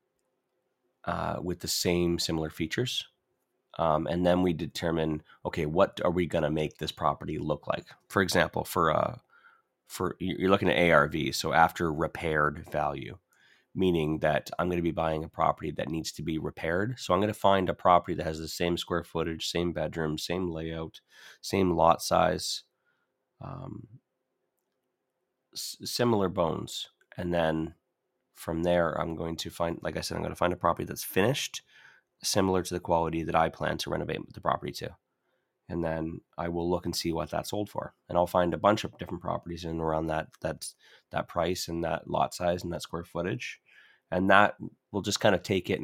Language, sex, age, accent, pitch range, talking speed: English, male, 30-49, American, 80-90 Hz, 190 wpm